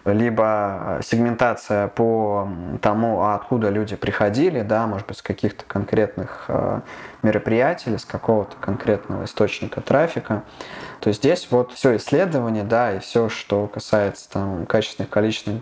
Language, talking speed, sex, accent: Russian, 115 wpm, male, native